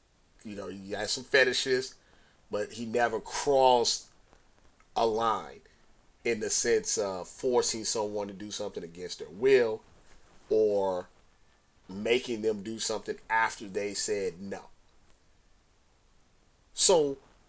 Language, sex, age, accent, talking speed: English, male, 30-49, American, 115 wpm